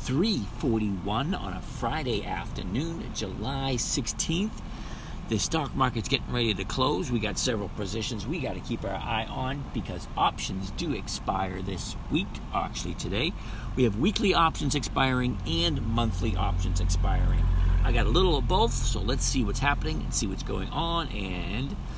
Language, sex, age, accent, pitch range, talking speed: English, male, 50-69, American, 100-135 Hz, 160 wpm